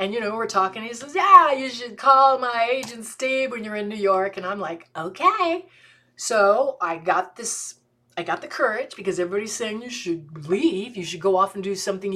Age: 40-59